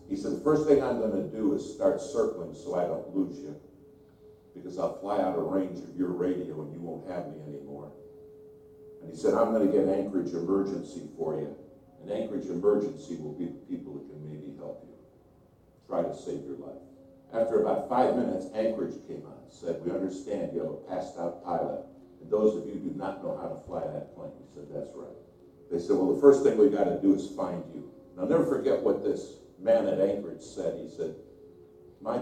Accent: American